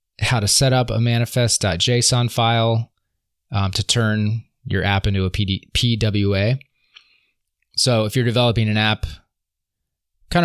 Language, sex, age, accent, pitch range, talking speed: English, male, 20-39, American, 95-120 Hz, 125 wpm